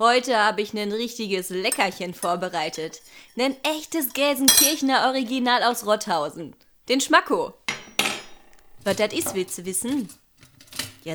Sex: female